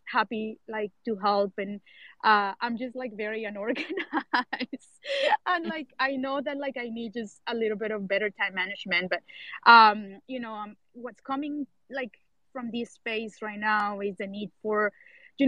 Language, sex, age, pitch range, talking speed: English, female, 20-39, 210-250 Hz, 175 wpm